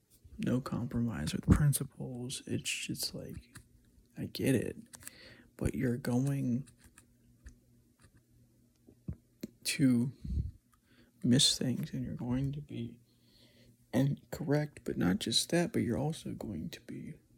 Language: English